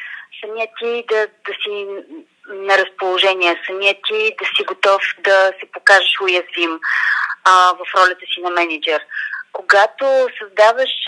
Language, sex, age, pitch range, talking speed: Bulgarian, female, 30-49, 195-230 Hz, 130 wpm